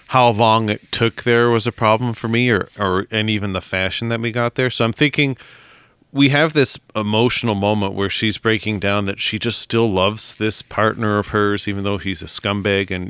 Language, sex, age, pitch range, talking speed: English, male, 30-49, 100-120 Hz, 215 wpm